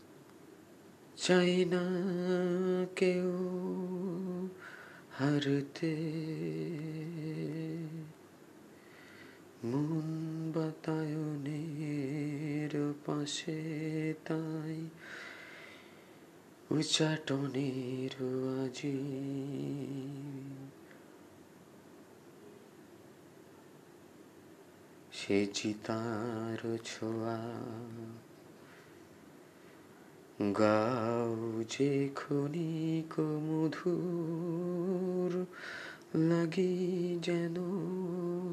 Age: 30-49